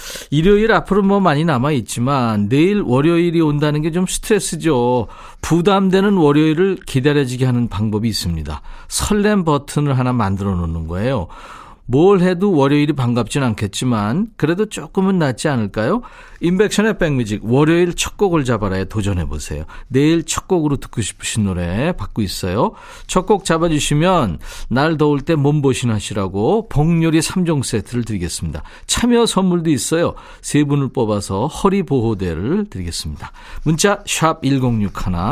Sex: male